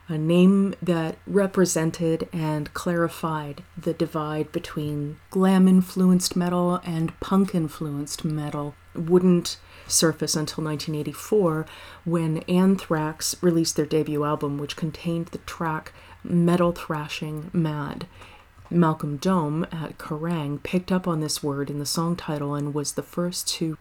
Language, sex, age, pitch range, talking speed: English, female, 30-49, 150-180 Hz, 125 wpm